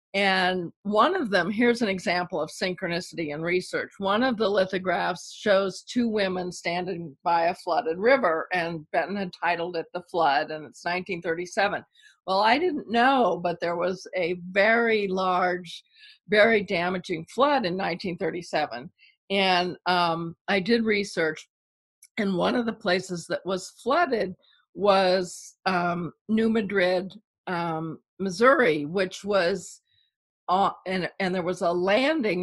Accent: American